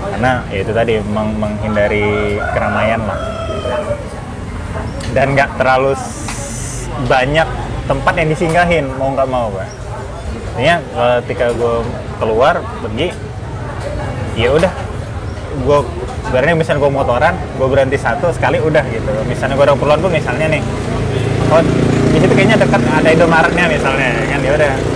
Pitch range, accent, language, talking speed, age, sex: 115-150 Hz, native, Indonesian, 120 wpm, 20-39, male